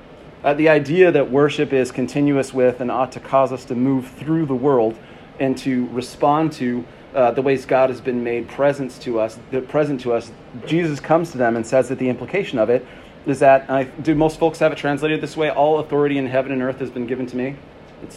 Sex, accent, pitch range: male, American, 120-150 Hz